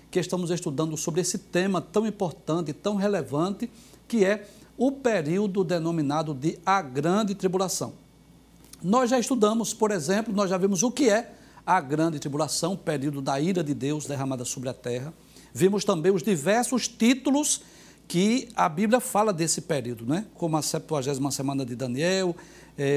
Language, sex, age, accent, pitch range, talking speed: Portuguese, male, 60-79, Brazilian, 155-205 Hz, 160 wpm